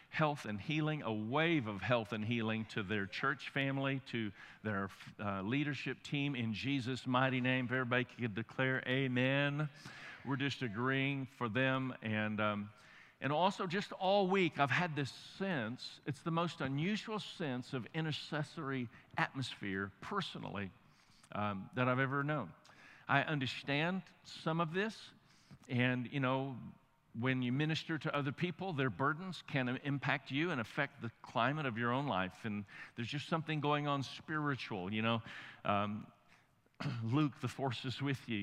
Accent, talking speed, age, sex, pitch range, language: American, 155 wpm, 50-69, male, 120-150 Hz, English